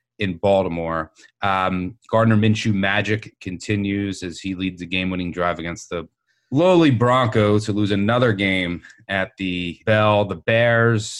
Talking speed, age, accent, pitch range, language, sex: 140 wpm, 30-49, American, 90-115 Hz, English, male